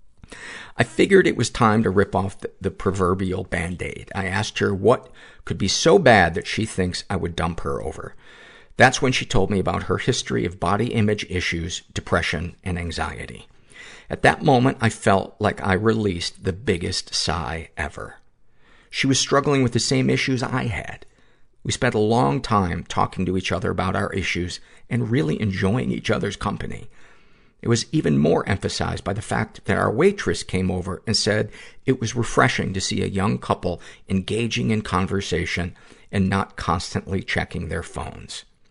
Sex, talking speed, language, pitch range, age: male, 175 wpm, English, 90-110 Hz, 50-69